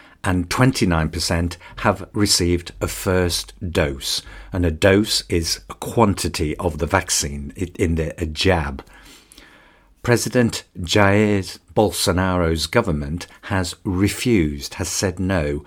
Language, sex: English, male